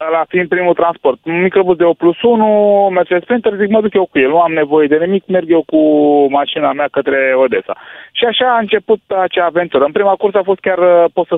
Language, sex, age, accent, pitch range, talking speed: Romanian, male, 30-49, native, 135-180 Hz, 230 wpm